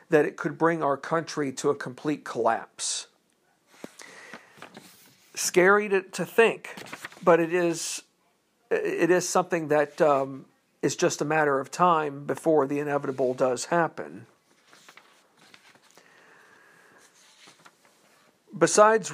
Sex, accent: male, American